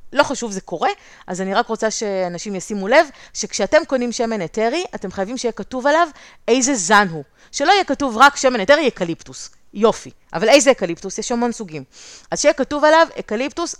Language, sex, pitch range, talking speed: Hebrew, female, 180-245 Hz, 185 wpm